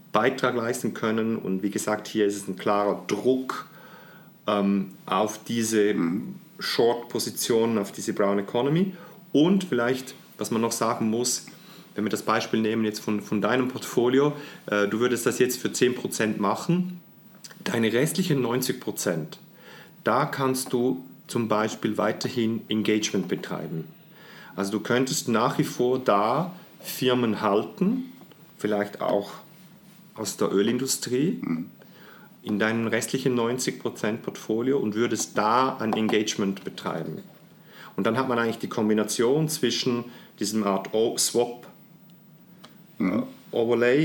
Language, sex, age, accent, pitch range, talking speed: German, male, 40-59, German, 110-140 Hz, 125 wpm